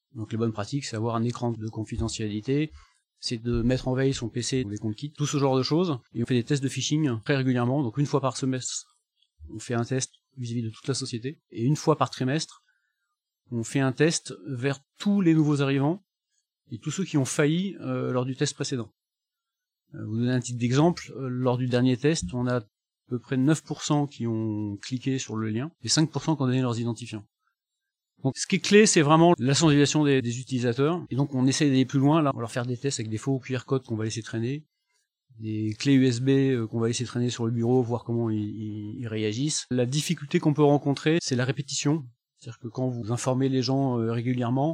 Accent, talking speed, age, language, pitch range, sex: French, 230 wpm, 30-49, French, 120-150 Hz, male